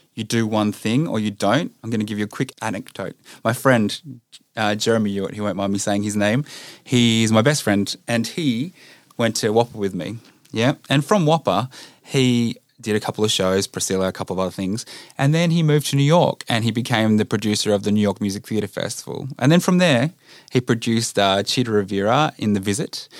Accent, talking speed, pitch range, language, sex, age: Australian, 215 wpm, 105-135 Hz, English, male, 20-39